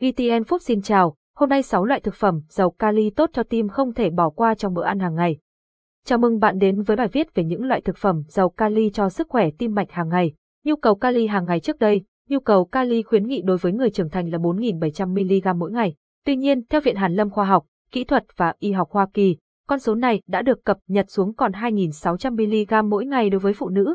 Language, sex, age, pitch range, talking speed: Vietnamese, female, 20-39, 185-240 Hz, 250 wpm